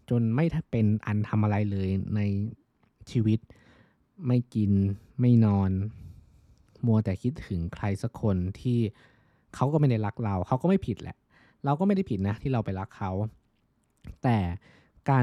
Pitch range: 95-120 Hz